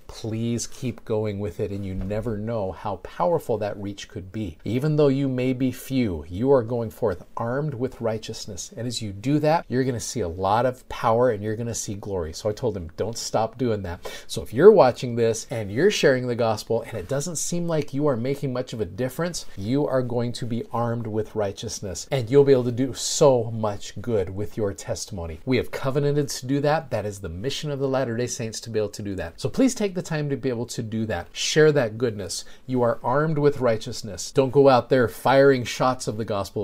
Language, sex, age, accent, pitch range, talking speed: English, male, 40-59, American, 105-135 Hz, 235 wpm